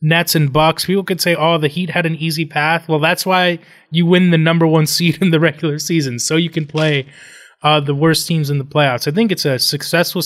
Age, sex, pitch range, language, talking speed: 20-39, male, 140-175 Hz, English, 245 wpm